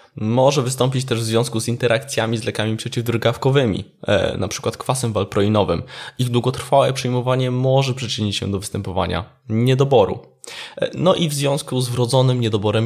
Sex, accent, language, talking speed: male, native, Polish, 135 wpm